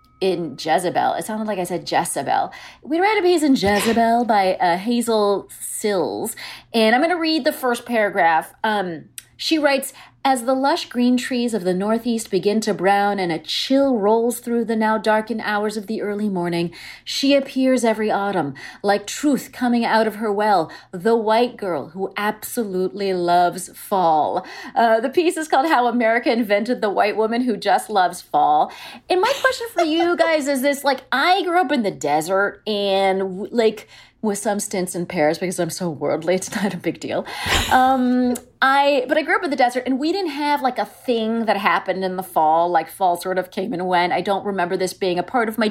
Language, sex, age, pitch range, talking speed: English, female, 30-49, 195-255 Hz, 200 wpm